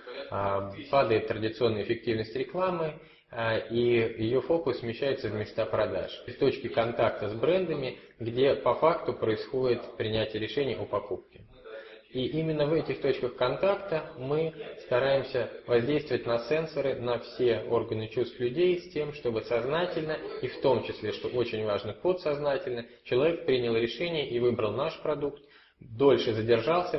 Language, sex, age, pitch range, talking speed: Russian, male, 20-39, 110-145 Hz, 135 wpm